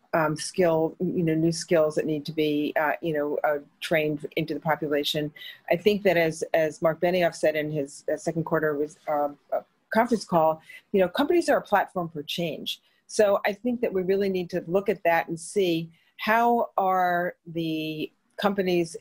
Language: English